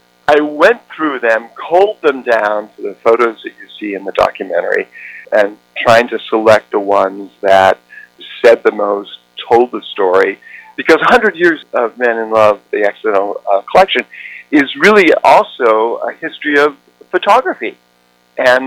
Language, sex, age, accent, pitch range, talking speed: English, male, 50-69, American, 95-160 Hz, 155 wpm